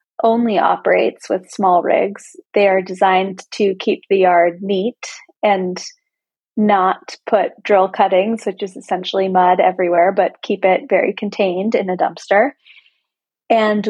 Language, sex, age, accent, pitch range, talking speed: English, female, 20-39, American, 185-215 Hz, 140 wpm